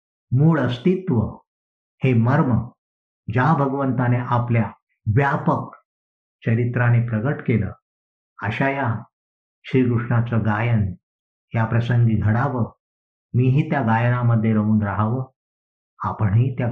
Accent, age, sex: native, 50-69, male